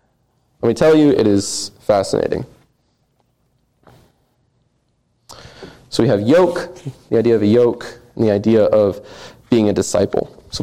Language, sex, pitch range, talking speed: English, male, 105-140 Hz, 135 wpm